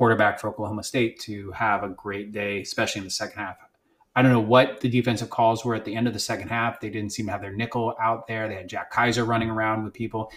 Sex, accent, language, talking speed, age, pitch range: male, American, English, 265 wpm, 30-49, 105-125 Hz